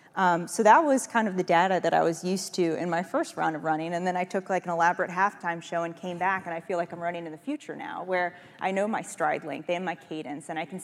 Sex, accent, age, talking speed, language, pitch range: female, American, 30-49, 295 wpm, English, 165-185 Hz